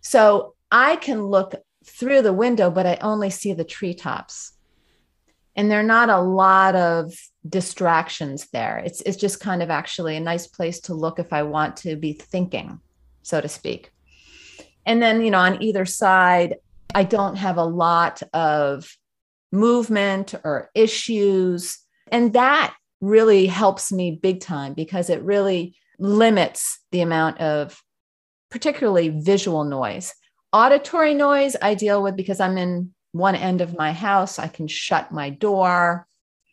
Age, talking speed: 30-49, 150 wpm